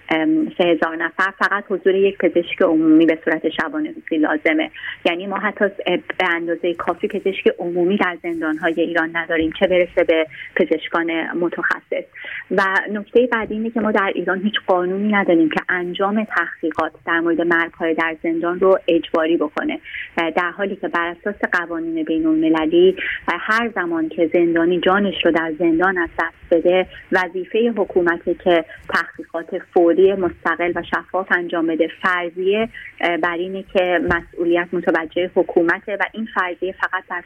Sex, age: female, 30-49